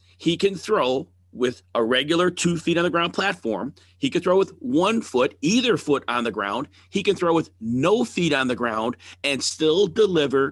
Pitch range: 110-165 Hz